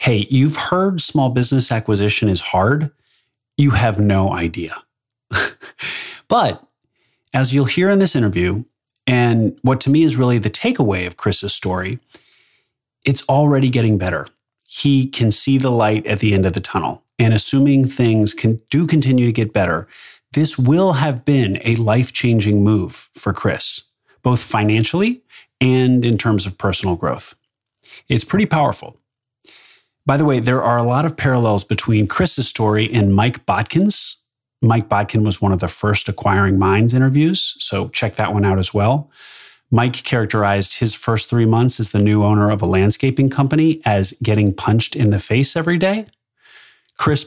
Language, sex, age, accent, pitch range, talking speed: English, male, 30-49, American, 105-135 Hz, 165 wpm